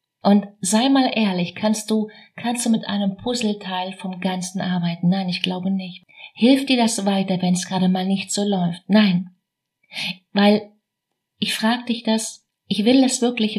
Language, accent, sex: German, German, female